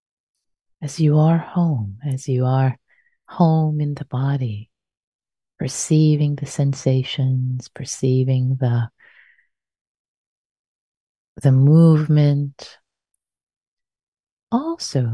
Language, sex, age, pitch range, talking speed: English, female, 30-49, 130-170 Hz, 75 wpm